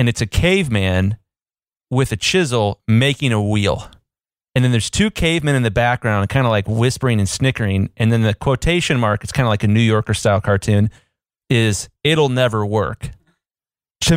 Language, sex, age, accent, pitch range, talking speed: English, male, 30-49, American, 100-125 Hz, 180 wpm